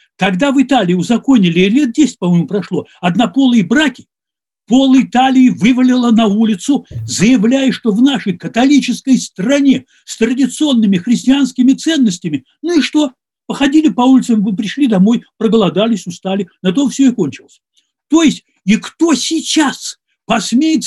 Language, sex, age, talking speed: Russian, male, 60-79, 135 wpm